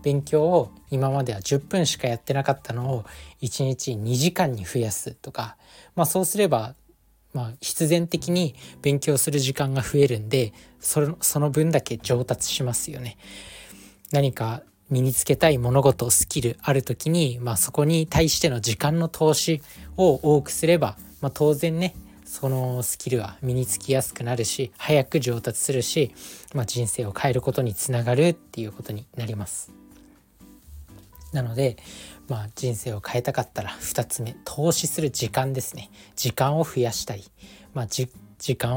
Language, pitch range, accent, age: Japanese, 115-155 Hz, native, 20-39